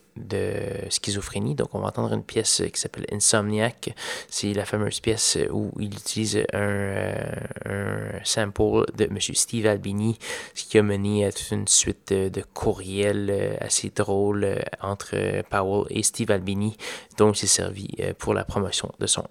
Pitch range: 100-110 Hz